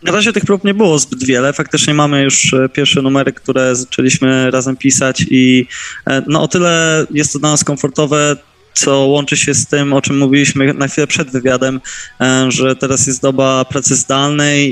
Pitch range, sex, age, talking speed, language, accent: 135-145 Hz, male, 20-39, 180 wpm, Polish, native